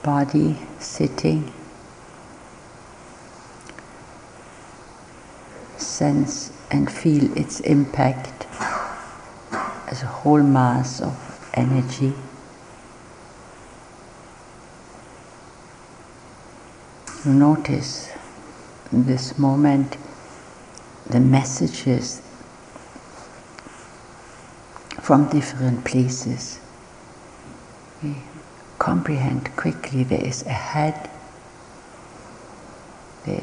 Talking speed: 50 wpm